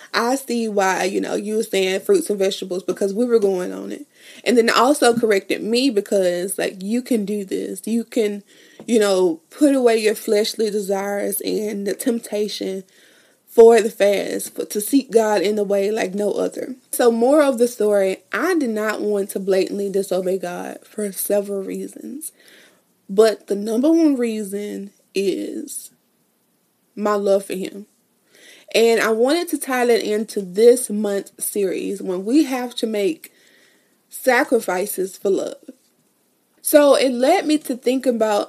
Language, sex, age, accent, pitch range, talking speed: English, female, 20-39, American, 195-245 Hz, 160 wpm